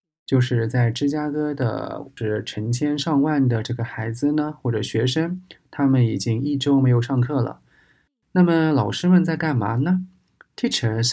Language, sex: Chinese, male